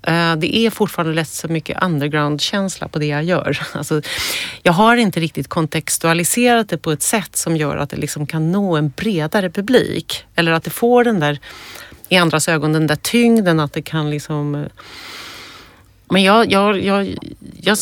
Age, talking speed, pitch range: 40-59, 175 wpm, 155-200 Hz